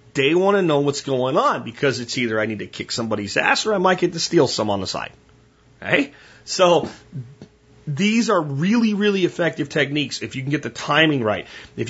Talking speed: 210 wpm